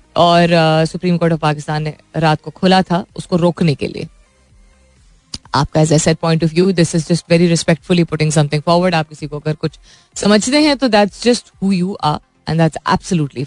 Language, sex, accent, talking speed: Hindi, female, native, 135 wpm